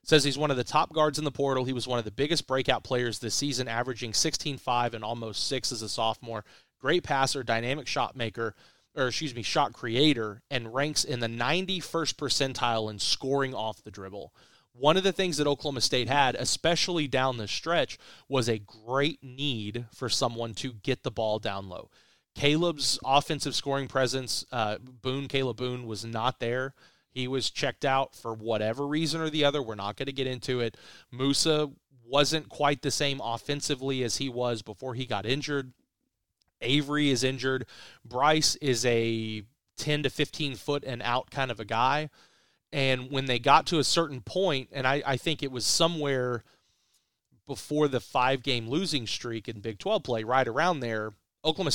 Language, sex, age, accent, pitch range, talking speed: English, male, 30-49, American, 115-145 Hz, 185 wpm